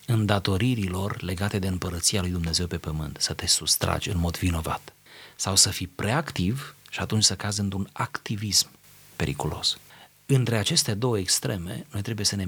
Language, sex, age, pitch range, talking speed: Romanian, male, 30-49, 90-125 Hz, 165 wpm